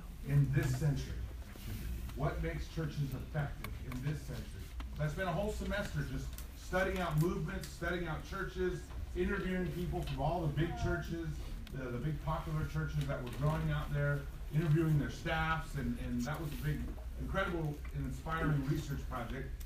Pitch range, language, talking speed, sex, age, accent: 125-160 Hz, English, 160 wpm, male, 40-59, American